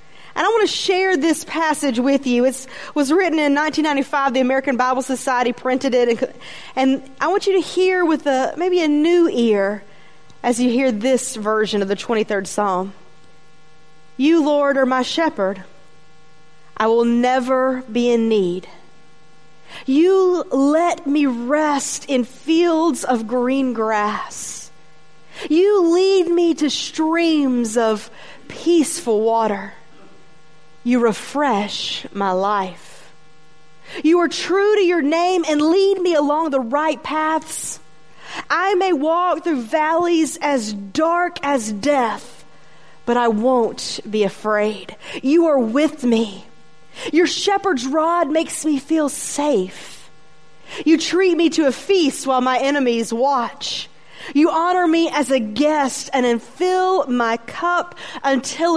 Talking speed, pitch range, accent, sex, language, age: 135 wpm, 230-320 Hz, American, female, Italian, 30-49